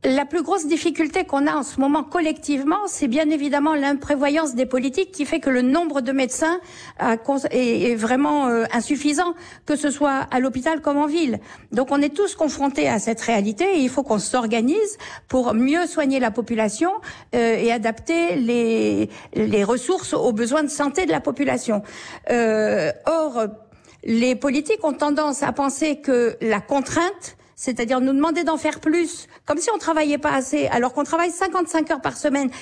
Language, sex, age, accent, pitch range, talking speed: French, female, 50-69, French, 240-315 Hz, 170 wpm